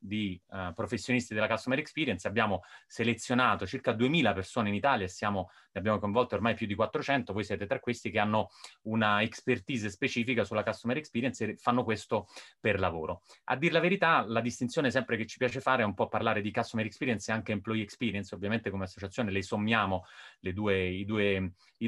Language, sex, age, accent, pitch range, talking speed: Italian, male, 30-49, native, 95-115 Hz, 195 wpm